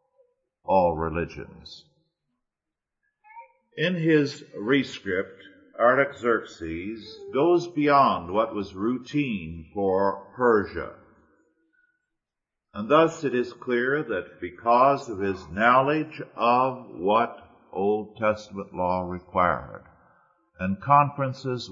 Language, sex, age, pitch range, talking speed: English, male, 50-69, 100-150 Hz, 85 wpm